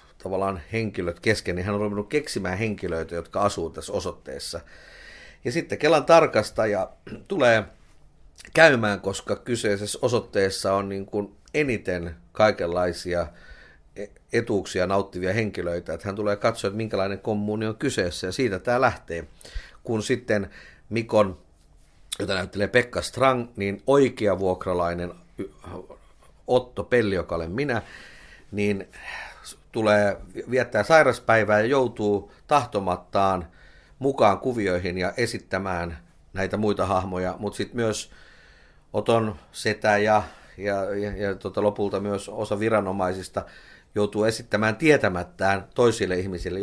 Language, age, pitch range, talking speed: Finnish, 50-69, 90-110 Hz, 115 wpm